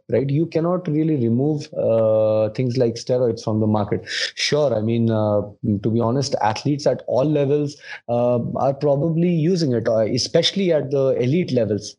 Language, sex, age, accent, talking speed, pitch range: Hindi, male, 20-39, native, 165 wpm, 115-150 Hz